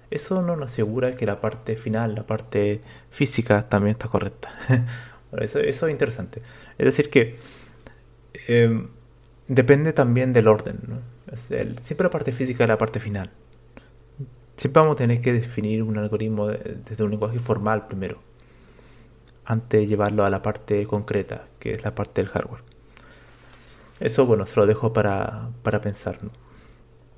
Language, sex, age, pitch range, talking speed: Spanish, male, 30-49, 110-125 Hz, 165 wpm